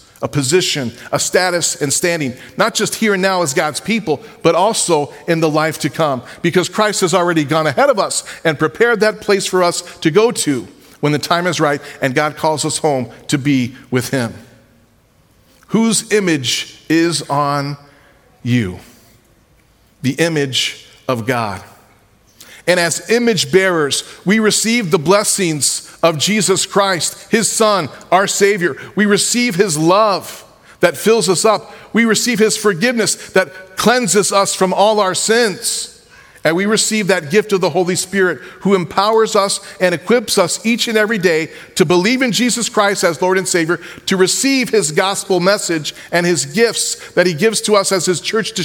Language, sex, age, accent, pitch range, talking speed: English, male, 40-59, American, 155-215 Hz, 175 wpm